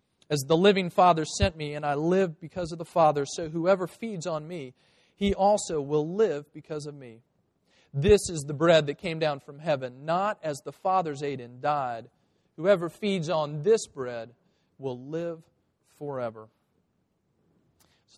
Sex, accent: male, American